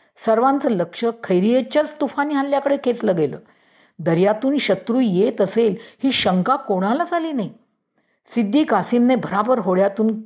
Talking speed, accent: 115 wpm, native